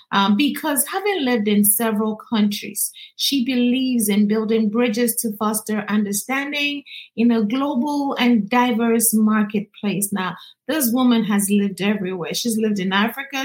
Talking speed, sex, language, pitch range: 135 wpm, female, English, 215-275 Hz